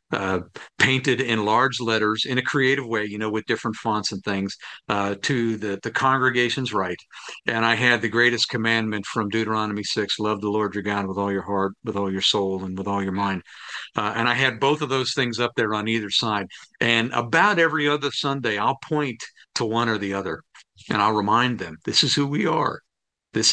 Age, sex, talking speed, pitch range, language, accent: 50-69, male, 215 wpm, 105-130 Hz, English, American